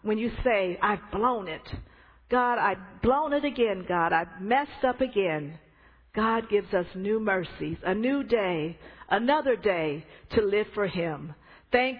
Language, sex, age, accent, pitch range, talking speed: English, female, 50-69, American, 175-235 Hz, 155 wpm